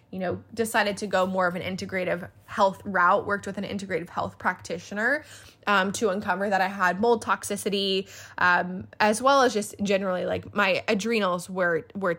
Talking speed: 175 wpm